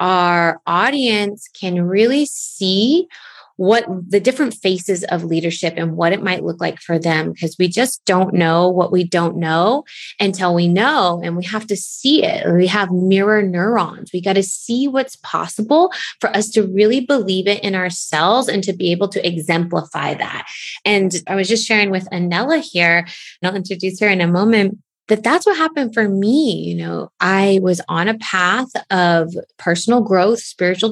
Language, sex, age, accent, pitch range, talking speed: English, female, 20-39, American, 170-210 Hz, 180 wpm